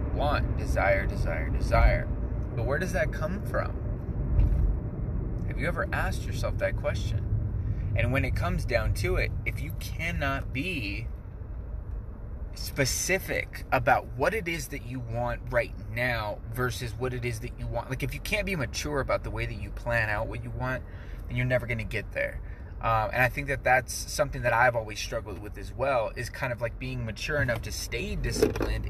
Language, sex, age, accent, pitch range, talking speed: English, male, 20-39, American, 95-120 Hz, 190 wpm